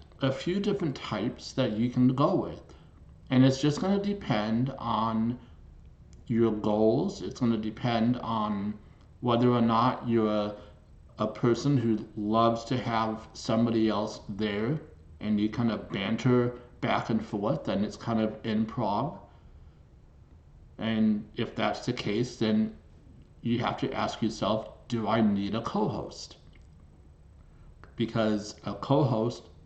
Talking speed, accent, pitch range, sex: 140 wpm, American, 100-125 Hz, male